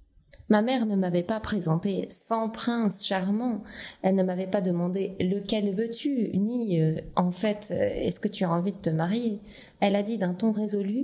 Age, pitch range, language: 20-39, 165-210 Hz, French